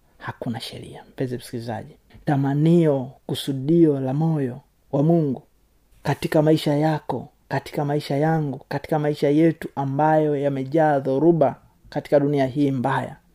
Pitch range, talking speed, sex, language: 135-160 Hz, 115 wpm, male, Swahili